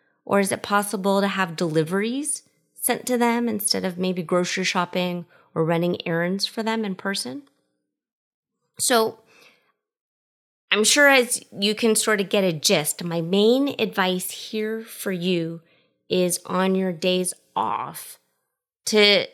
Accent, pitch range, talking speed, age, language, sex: American, 170-215 Hz, 140 wpm, 30-49, English, female